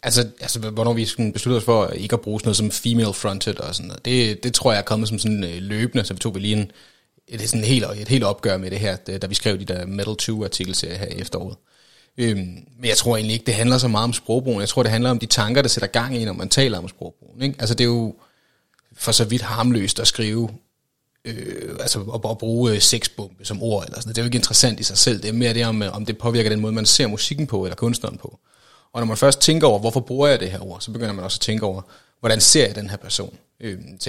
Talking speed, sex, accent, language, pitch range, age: 265 wpm, male, native, Danish, 105-120 Hz, 30-49